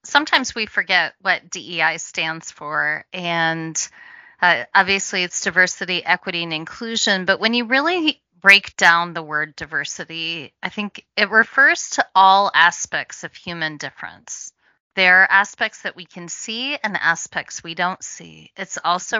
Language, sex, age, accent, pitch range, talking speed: English, female, 30-49, American, 170-225 Hz, 150 wpm